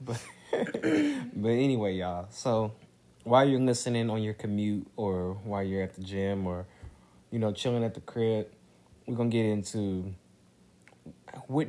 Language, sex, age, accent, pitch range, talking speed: English, male, 20-39, American, 90-115 Hz, 155 wpm